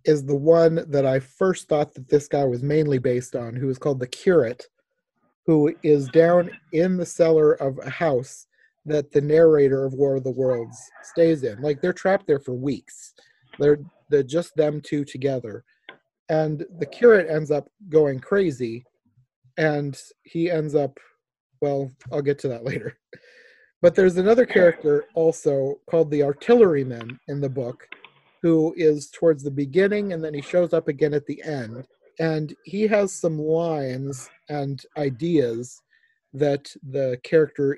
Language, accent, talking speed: English, American, 160 wpm